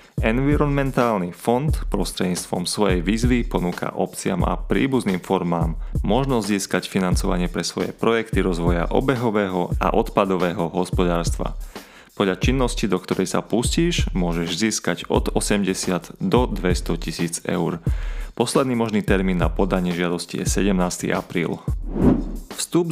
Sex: male